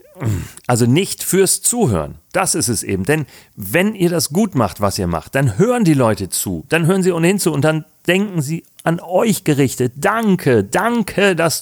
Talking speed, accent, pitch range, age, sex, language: 190 wpm, German, 105-150 Hz, 40-59, male, German